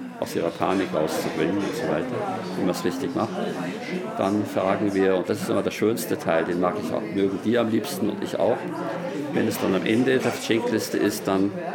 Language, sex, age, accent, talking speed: German, male, 50-69, German, 215 wpm